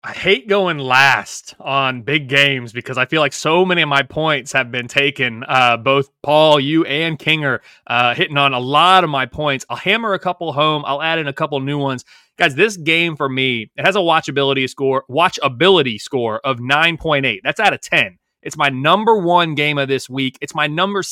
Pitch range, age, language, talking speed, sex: 135-165 Hz, 30-49, English, 215 wpm, male